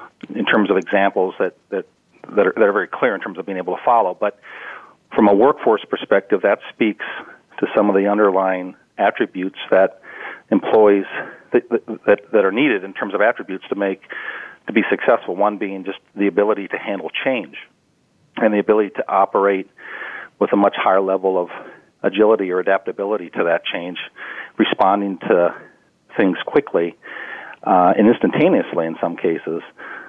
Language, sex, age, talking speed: English, male, 40-59, 165 wpm